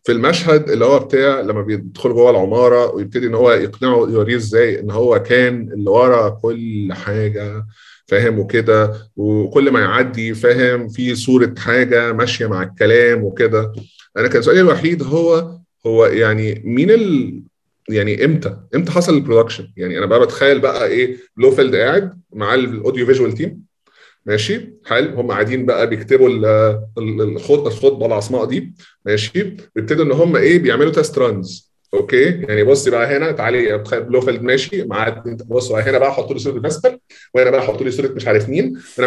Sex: male